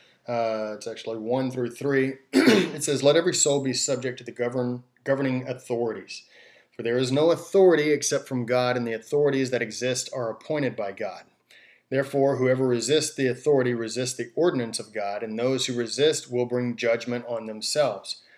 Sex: male